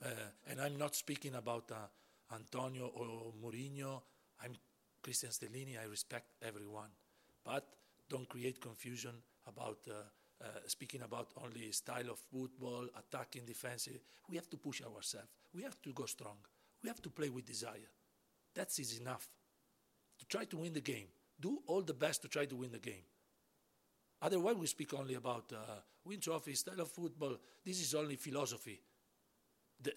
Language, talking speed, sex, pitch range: English, 165 wpm, male, 120-165 Hz